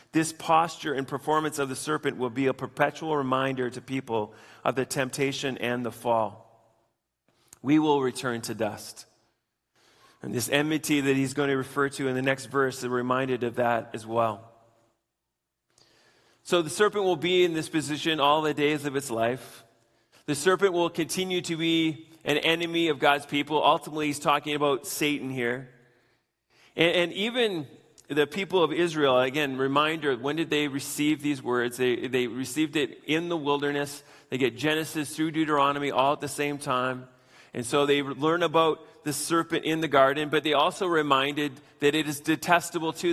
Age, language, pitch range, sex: 30-49, English, 125-155 Hz, male